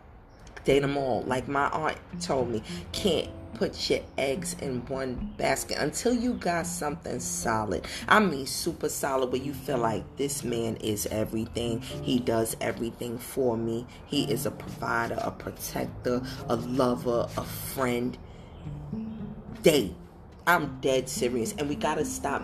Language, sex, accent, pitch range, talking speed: English, female, American, 115-145 Hz, 145 wpm